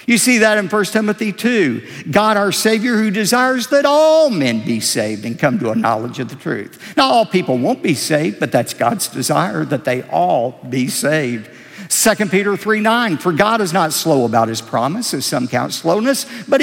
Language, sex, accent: English, male, American